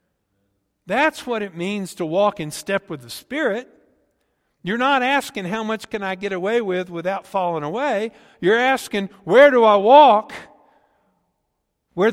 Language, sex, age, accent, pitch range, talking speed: English, male, 50-69, American, 140-220 Hz, 155 wpm